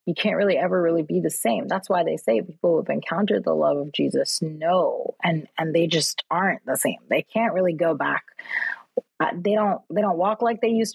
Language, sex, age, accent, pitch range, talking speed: English, female, 30-49, American, 165-215 Hz, 230 wpm